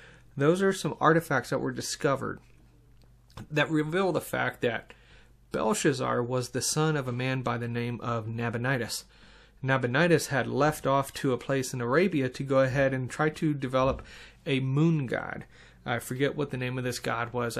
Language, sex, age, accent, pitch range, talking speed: English, male, 30-49, American, 125-155 Hz, 175 wpm